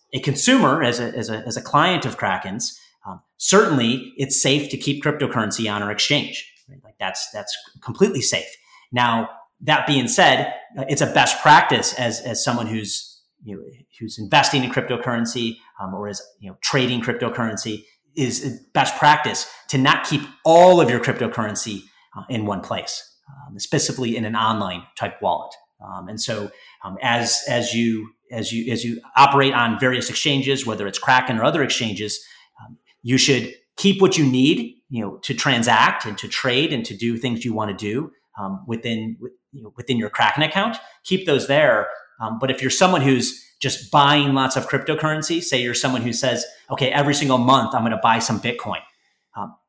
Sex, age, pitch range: male, 30-49, 115-140 Hz